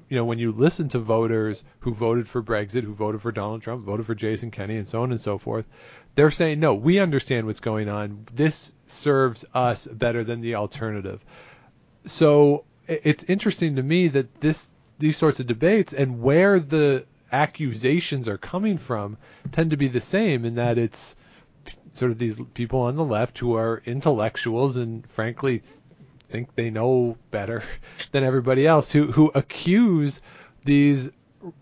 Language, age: English, 40-59